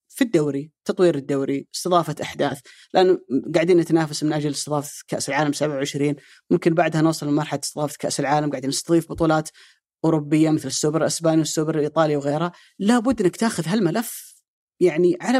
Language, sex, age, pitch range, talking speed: Arabic, female, 30-49, 155-195 Hz, 150 wpm